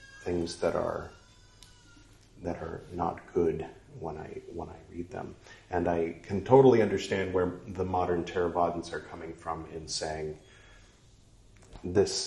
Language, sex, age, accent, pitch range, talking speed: English, male, 40-59, American, 85-115 Hz, 135 wpm